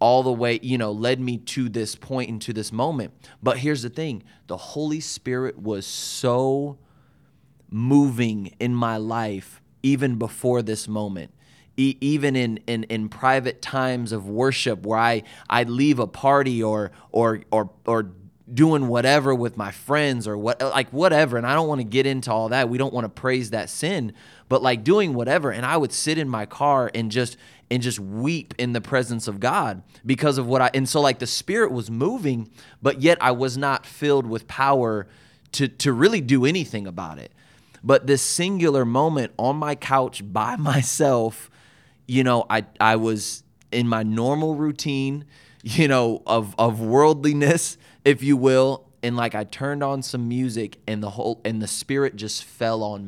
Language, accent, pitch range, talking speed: English, American, 115-140 Hz, 185 wpm